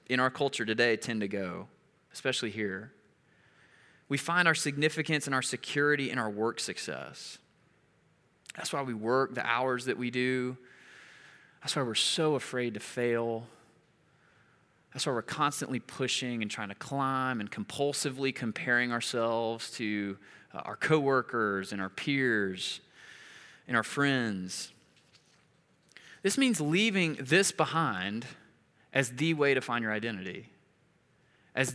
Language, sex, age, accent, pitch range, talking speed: English, male, 20-39, American, 115-155 Hz, 135 wpm